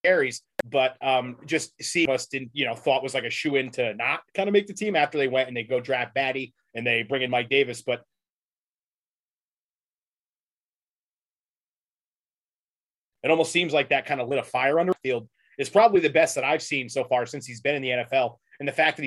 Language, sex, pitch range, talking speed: English, male, 130-160 Hz, 215 wpm